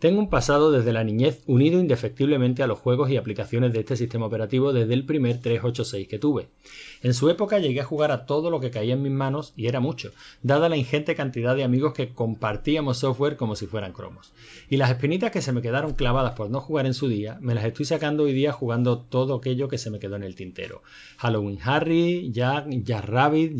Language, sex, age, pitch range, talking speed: Spanish, male, 30-49, 115-150 Hz, 225 wpm